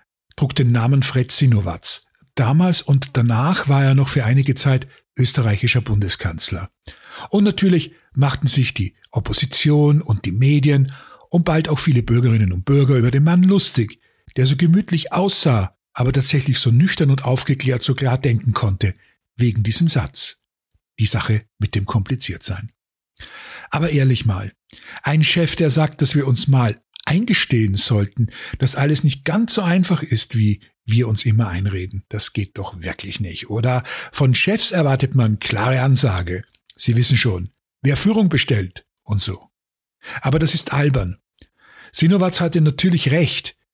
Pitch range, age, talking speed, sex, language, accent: 110-150 Hz, 50-69, 155 wpm, male, German, German